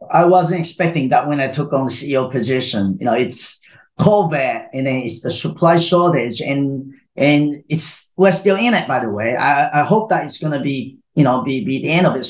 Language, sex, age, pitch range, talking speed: English, male, 40-59, 140-175 Hz, 230 wpm